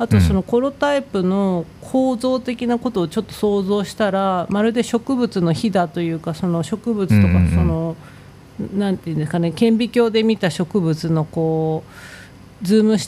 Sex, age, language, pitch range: female, 40-59, Japanese, 165-215 Hz